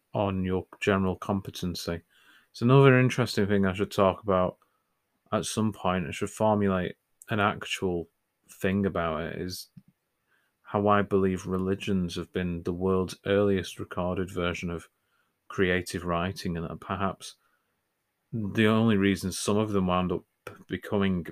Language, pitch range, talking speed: English, 90-100 Hz, 140 wpm